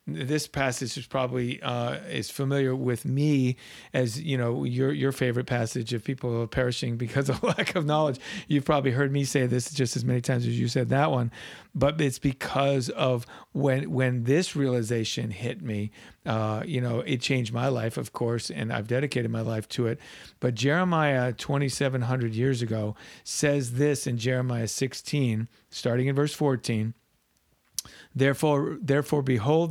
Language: English